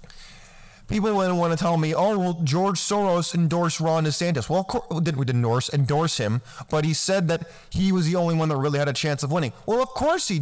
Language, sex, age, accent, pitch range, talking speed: English, male, 30-49, American, 140-185 Hz, 235 wpm